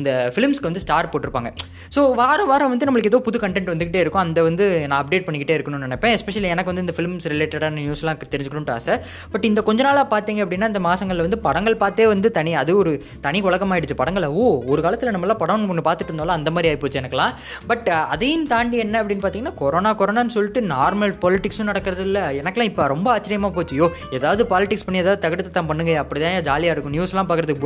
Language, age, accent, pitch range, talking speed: Tamil, 20-39, native, 150-205 Hz, 195 wpm